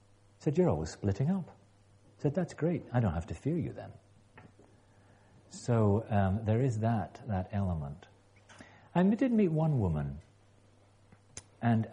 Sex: male